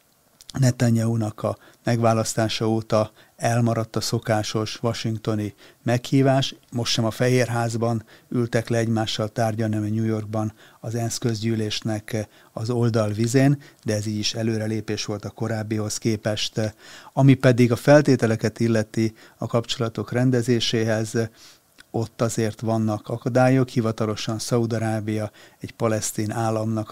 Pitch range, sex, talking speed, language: 110-115 Hz, male, 120 wpm, Hungarian